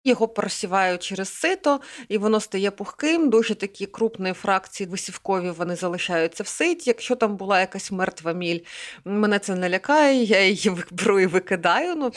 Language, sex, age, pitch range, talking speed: Ukrainian, female, 30-49, 190-235 Hz, 165 wpm